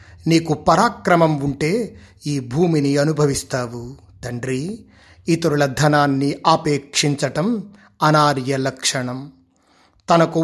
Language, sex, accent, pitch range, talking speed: Telugu, male, native, 145-175 Hz, 75 wpm